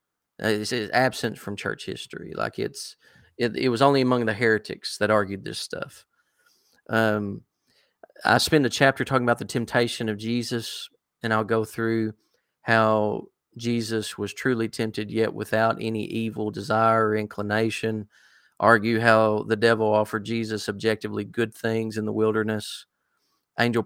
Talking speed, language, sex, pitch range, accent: 150 wpm, English, male, 105-115 Hz, American